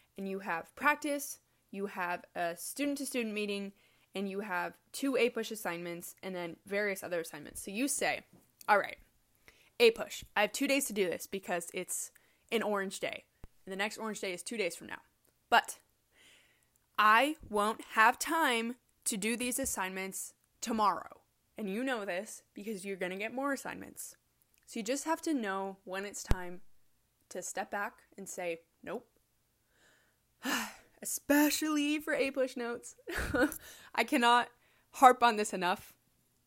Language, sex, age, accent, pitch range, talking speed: English, female, 20-39, American, 195-255 Hz, 165 wpm